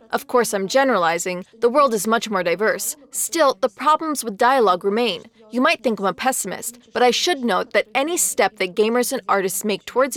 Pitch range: 200-255 Hz